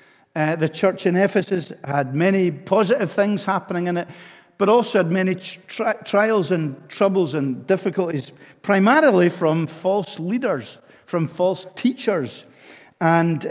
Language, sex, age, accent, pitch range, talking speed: English, male, 50-69, British, 140-180 Hz, 135 wpm